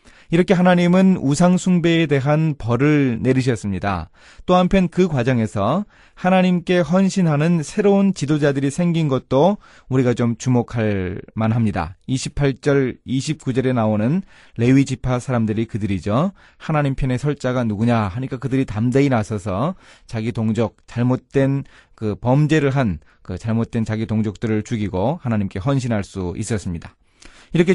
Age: 30-49